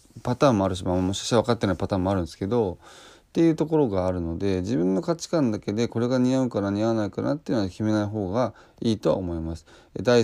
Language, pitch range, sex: Japanese, 95-130 Hz, male